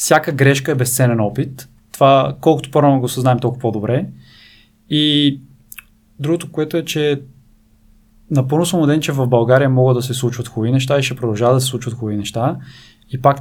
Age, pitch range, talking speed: 20-39, 120-150 Hz, 180 wpm